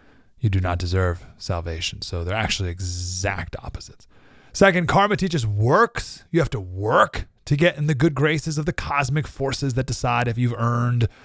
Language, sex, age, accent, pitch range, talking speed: English, male, 30-49, American, 95-150 Hz, 175 wpm